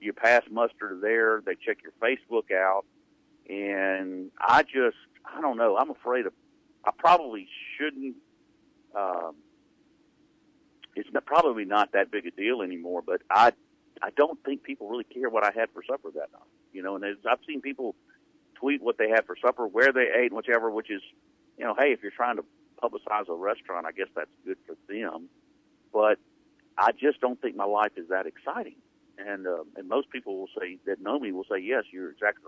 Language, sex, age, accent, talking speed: English, male, 50-69, American, 190 wpm